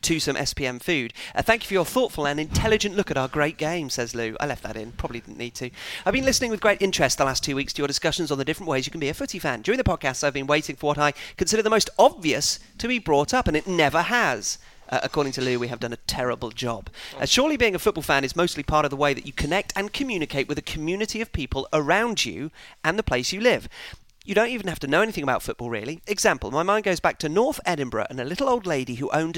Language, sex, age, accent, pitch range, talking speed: English, male, 40-59, British, 130-185 Hz, 275 wpm